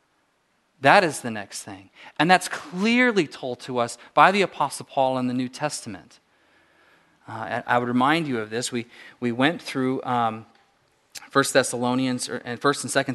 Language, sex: English, male